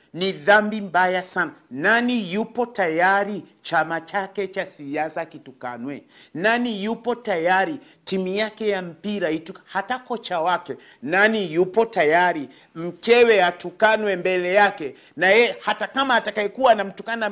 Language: Swahili